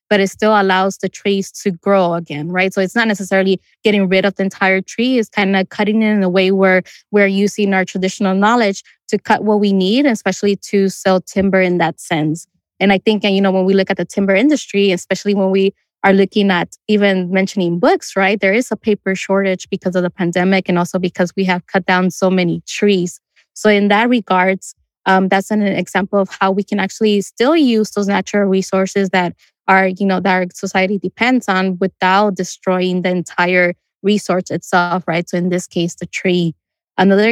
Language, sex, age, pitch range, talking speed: English, female, 20-39, 185-205 Hz, 205 wpm